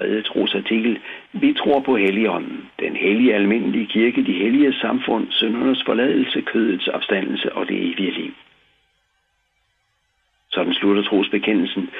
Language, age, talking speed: Danish, 60-79, 120 wpm